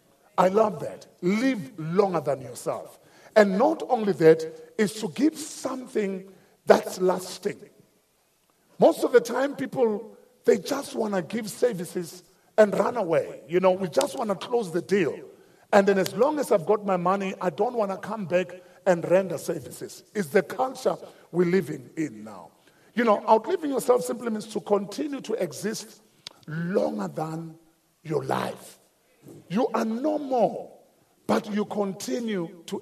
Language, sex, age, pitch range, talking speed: English, male, 50-69, 175-220 Hz, 160 wpm